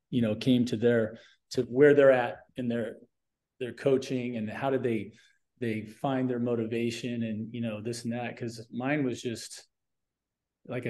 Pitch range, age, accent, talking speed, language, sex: 115-135 Hz, 40-59, American, 175 wpm, English, male